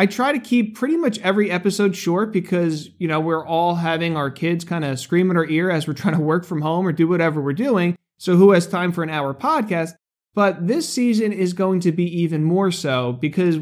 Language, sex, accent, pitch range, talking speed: English, male, American, 165-210 Hz, 240 wpm